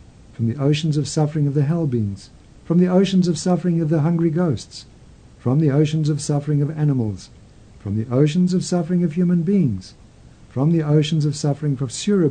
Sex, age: male, 50-69